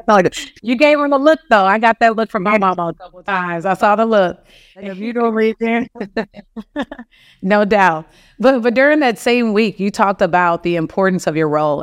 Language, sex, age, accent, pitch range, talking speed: English, female, 30-49, American, 170-210 Hz, 215 wpm